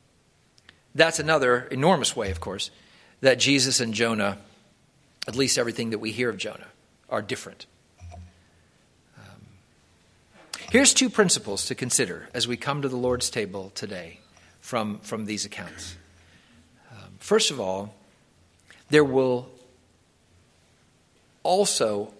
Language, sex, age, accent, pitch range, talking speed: English, male, 50-69, American, 95-150 Hz, 120 wpm